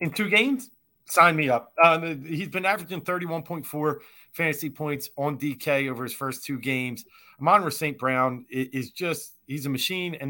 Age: 30-49